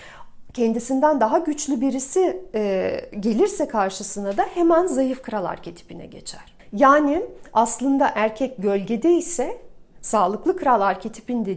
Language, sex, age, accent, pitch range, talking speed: Turkish, female, 40-59, native, 215-310 Hz, 110 wpm